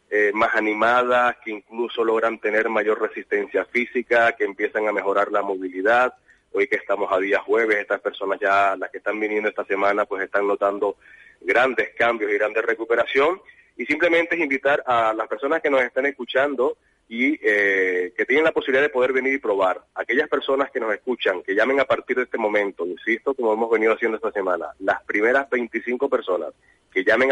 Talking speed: 190 wpm